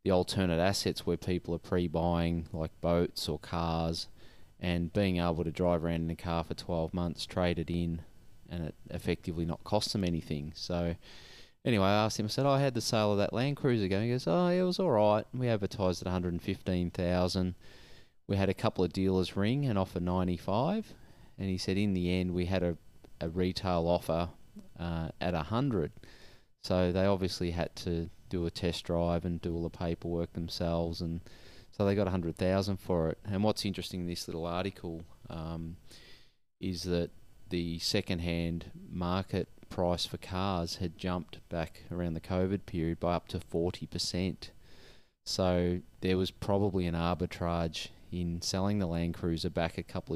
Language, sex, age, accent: English, male, 20-39, Australian